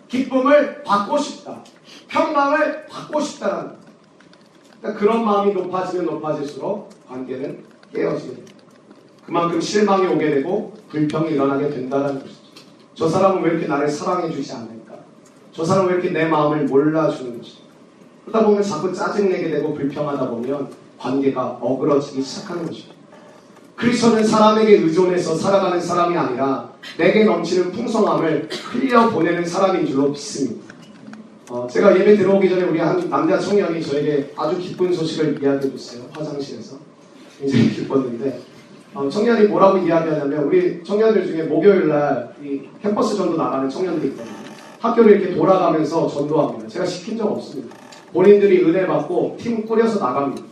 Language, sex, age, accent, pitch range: Korean, male, 40-59, native, 150-215 Hz